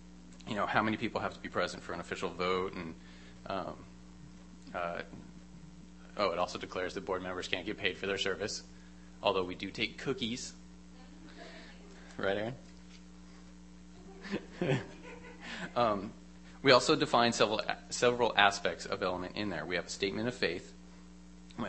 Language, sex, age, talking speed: English, male, 30-49, 150 wpm